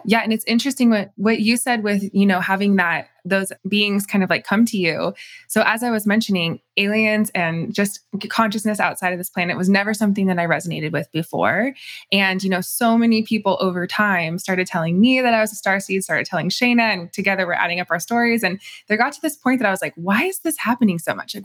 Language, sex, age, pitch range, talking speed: English, female, 20-39, 180-220 Hz, 240 wpm